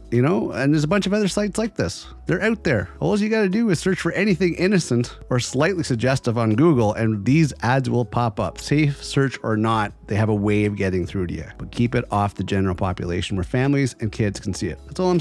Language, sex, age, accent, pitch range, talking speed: English, male, 30-49, American, 100-130 Hz, 255 wpm